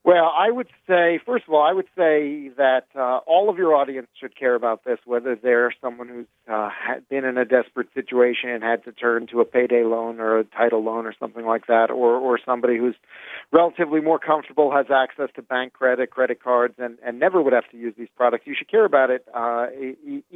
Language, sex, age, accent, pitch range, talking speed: English, male, 50-69, American, 115-130 Hz, 220 wpm